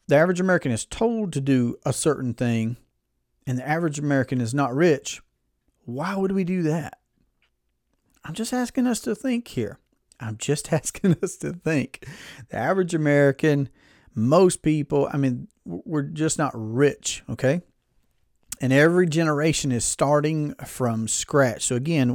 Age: 40-59